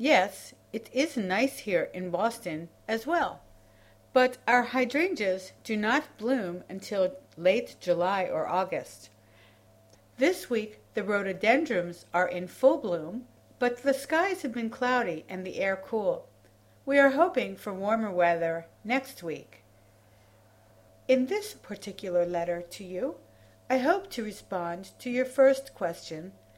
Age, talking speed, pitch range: 60-79, 135 wpm, 160-240 Hz